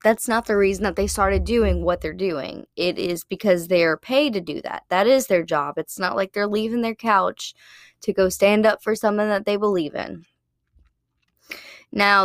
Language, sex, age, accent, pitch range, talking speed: English, female, 10-29, American, 185-220 Hz, 205 wpm